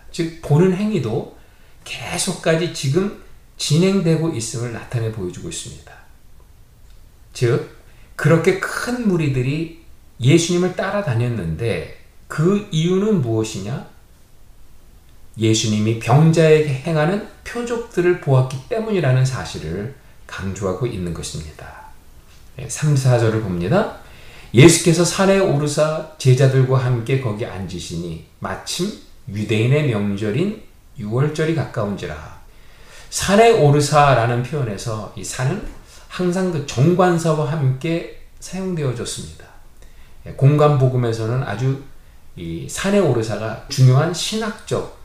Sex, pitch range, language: male, 110-165 Hz, Korean